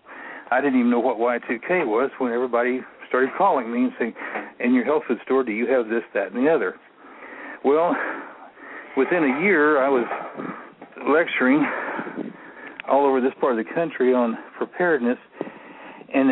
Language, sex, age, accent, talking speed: English, male, 60-79, American, 160 wpm